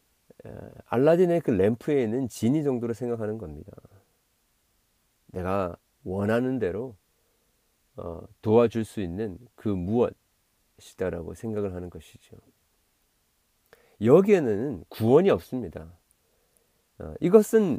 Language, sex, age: Korean, male, 40-59